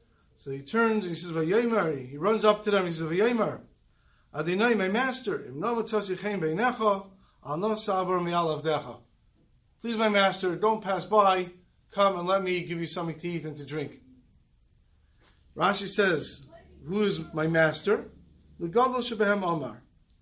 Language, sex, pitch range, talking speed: English, male, 160-210 Hz, 160 wpm